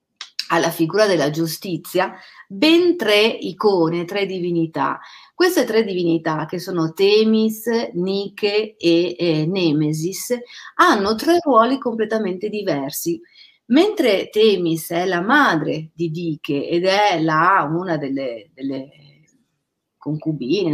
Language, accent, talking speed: Italian, native, 110 wpm